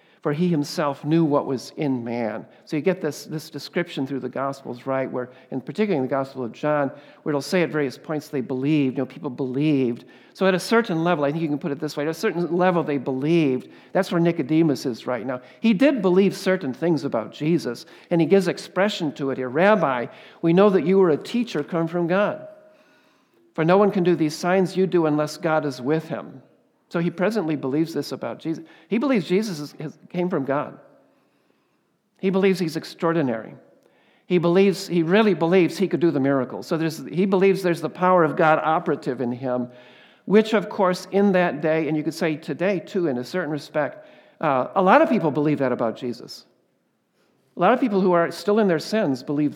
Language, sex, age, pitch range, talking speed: English, male, 50-69, 145-185 Hz, 215 wpm